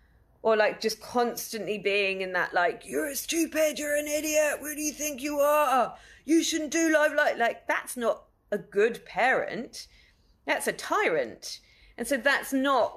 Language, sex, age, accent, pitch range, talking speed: English, female, 30-49, British, 190-260 Hz, 175 wpm